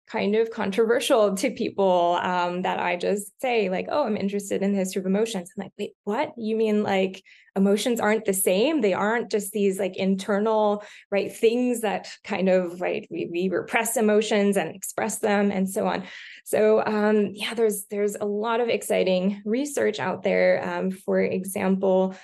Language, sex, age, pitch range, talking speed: English, female, 20-39, 185-215 Hz, 180 wpm